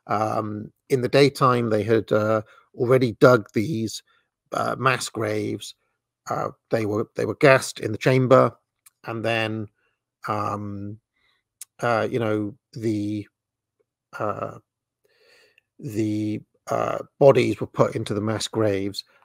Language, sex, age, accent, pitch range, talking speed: English, male, 50-69, British, 110-130 Hz, 120 wpm